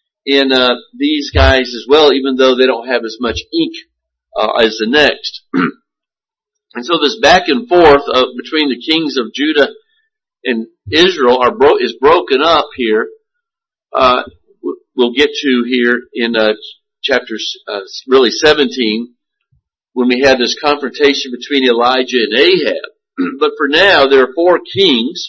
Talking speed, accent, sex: 155 wpm, American, male